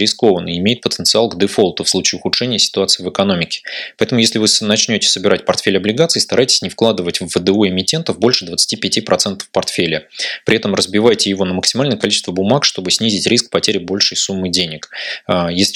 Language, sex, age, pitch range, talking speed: Russian, male, 20-39, 95-115 Hz, 170 wpm